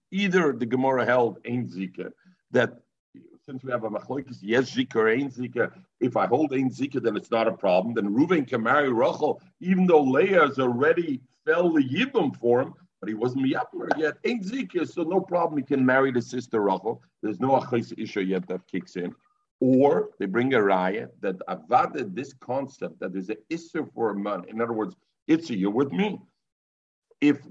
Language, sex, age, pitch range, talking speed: English, male, 50-69, 120-170 Hz, 195 wpm